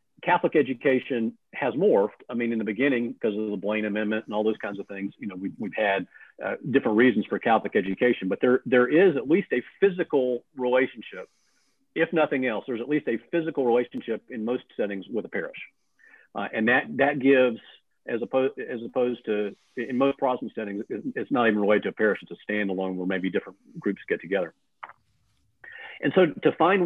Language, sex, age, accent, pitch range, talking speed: English, male, 50-69, American, 110-145 Hz, 200 wpm